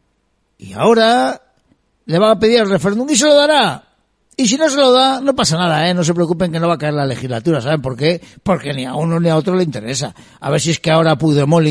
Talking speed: 265 wpm